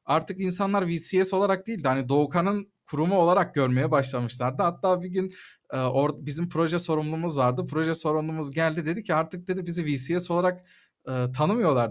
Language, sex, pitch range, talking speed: Turkish, male, 130-175 Hz, 150 wpm